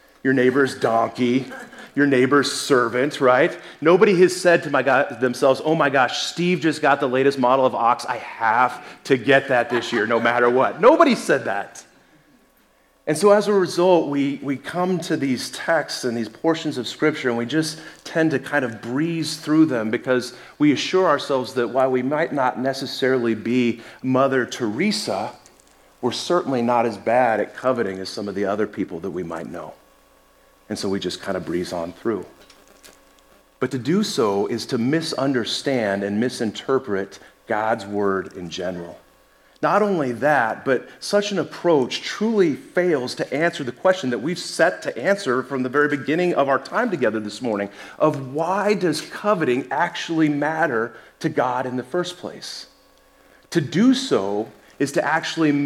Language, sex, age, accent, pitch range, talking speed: English, male, 30-49, American, 120-165 Hz, 175 wpm